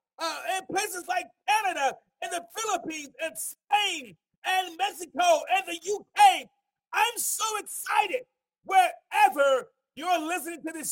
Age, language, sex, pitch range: 40-59, English, male, 275-390 Hz